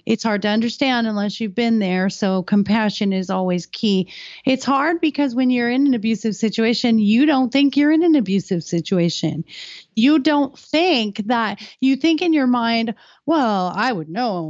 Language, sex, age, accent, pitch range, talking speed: English, female, 40-59, American, 195-235 Hz, 180 wpm